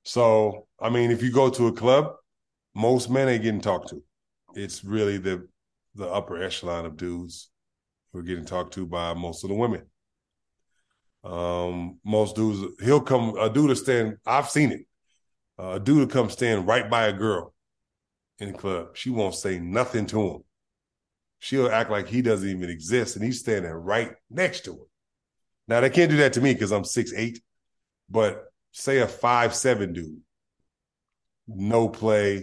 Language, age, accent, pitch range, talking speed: English, 30-49, American, 90-115 Hz, 175 wpm